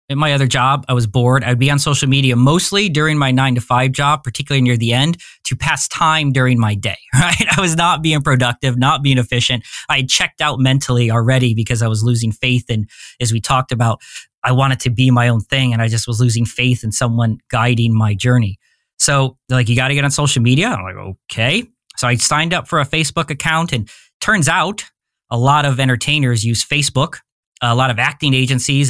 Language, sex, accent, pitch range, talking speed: English, male, American, 120-145 Hz, 220 wpm